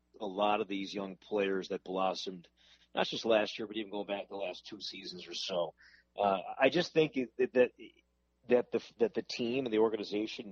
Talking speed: 205 wpm